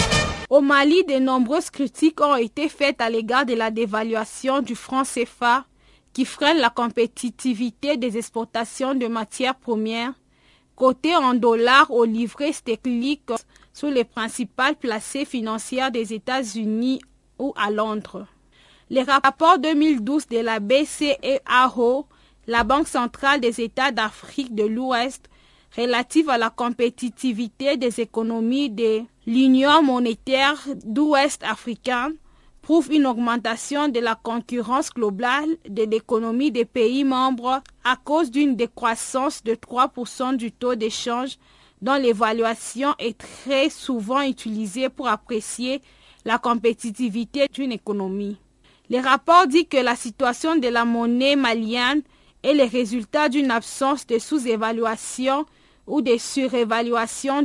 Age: 30-49